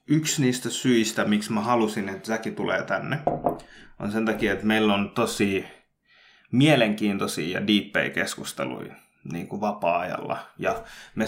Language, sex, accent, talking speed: English, male, Finnish, 130 wpm